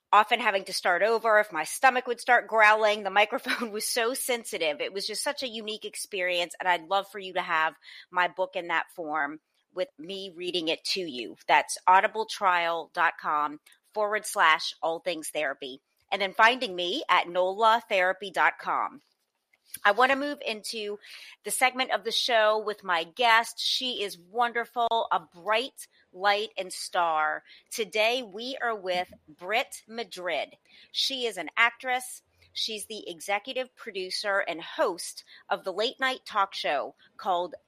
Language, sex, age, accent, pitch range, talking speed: English, female, 30-49, American, 180-235 Hz, 155 wpm